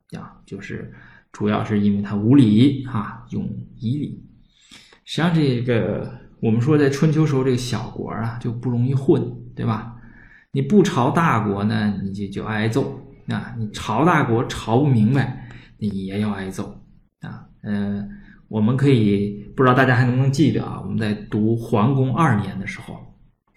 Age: 20-39